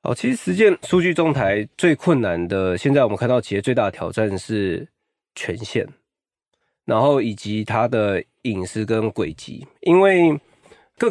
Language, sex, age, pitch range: Chinese, male, 20-39, 110-155 Hz